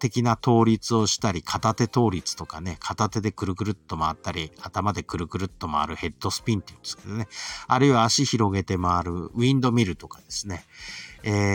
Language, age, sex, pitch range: Japanese, 50-69, male, 90-140 Hz